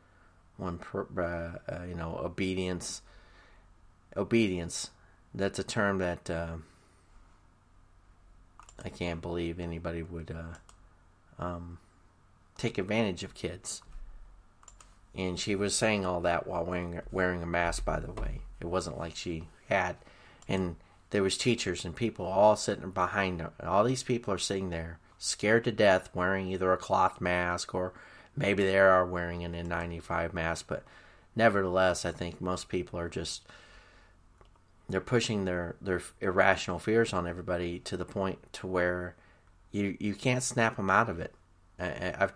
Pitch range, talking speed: 85-95 Hz, 145 wpm